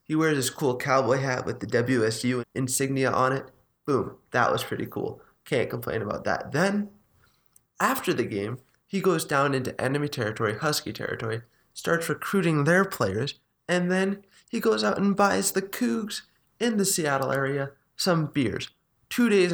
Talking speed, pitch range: 165 wpm, 120-150 Hz